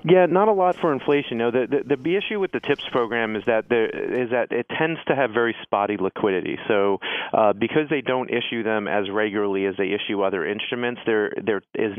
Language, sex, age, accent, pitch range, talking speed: English, male, 40-59, American, 105-120 Hz, 220 wpm